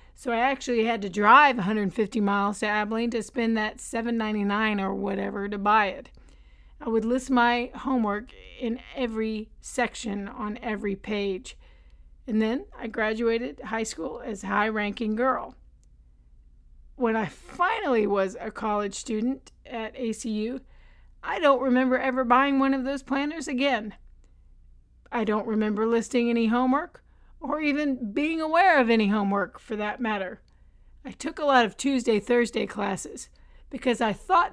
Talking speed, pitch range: 150 wpm, 200-245 Hz